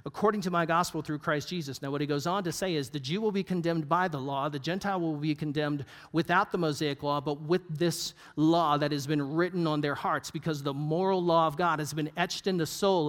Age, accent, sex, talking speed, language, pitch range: 50-69, American, male, 250 wpm, English, 150-190 Hz